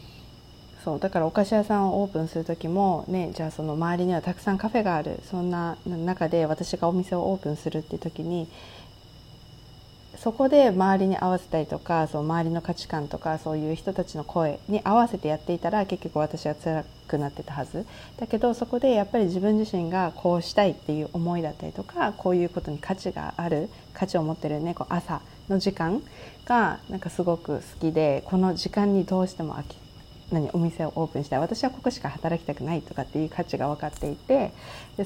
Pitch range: 160-200 Hz